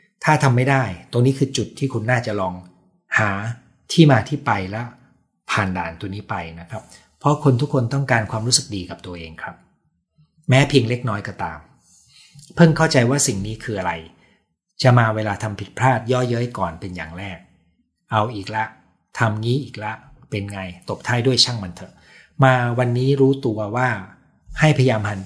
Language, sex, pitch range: Thai, male, 100-135 Hz